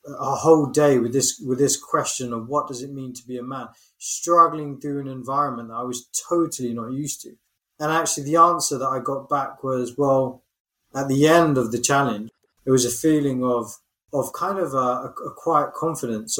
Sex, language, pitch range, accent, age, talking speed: male, English, 125-145 Hz, British, 20-39, 205 wpm